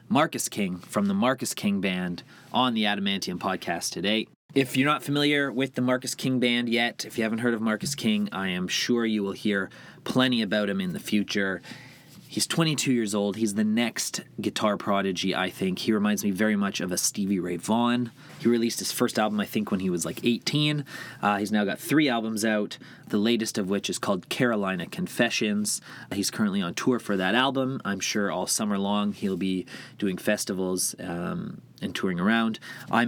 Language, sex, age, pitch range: English, male, 30-49, 100-130 Hz